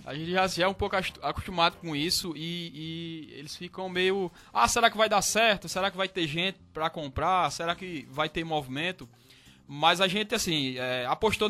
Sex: male